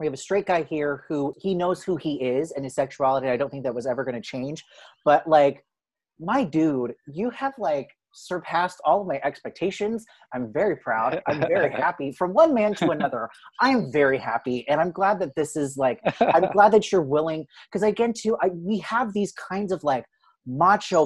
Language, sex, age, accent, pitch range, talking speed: English, male, 30-49, American, 140-200 Hz, 210 wpm